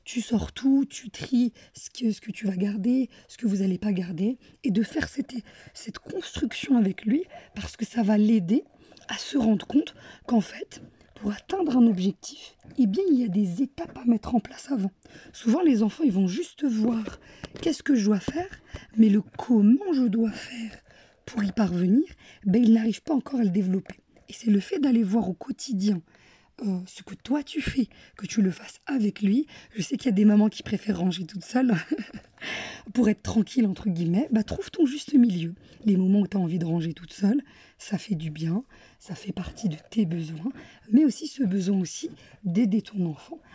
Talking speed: 210 wpm